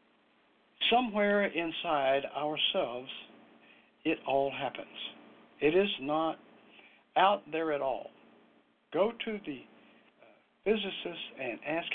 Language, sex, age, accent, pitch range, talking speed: English, male, 60-79, American, 135-200 Hz, 100 wpm